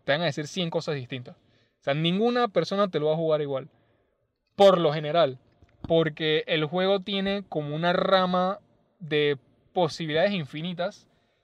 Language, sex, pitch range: Spanish, male, 145-190 Hz